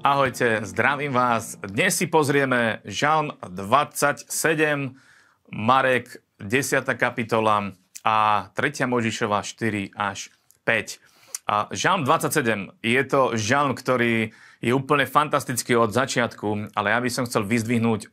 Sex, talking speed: male, 115 wpm